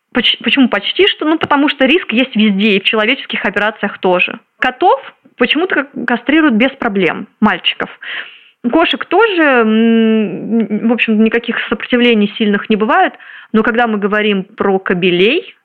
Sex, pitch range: female, 210-250 Hz